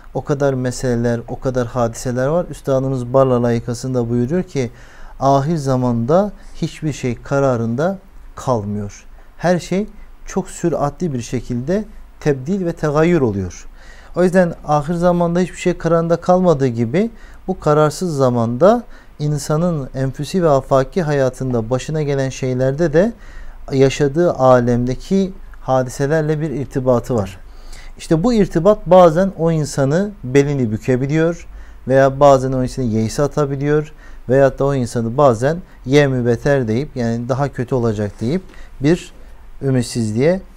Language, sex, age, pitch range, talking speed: Turkish, male, 50-69, 125-165 Hz, 125 wpm